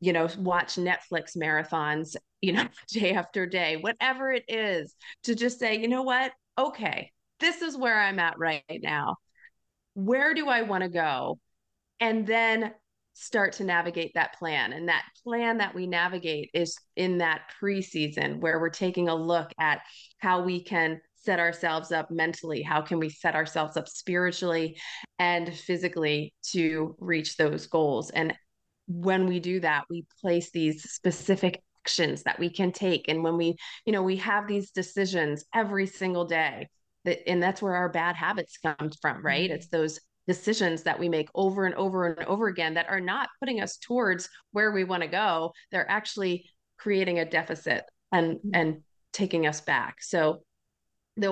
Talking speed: 170 wpm